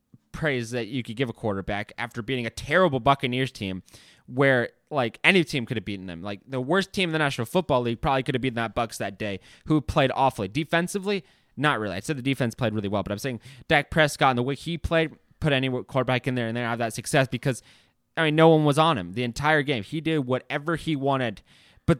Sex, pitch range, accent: male, 115-150 Hz, American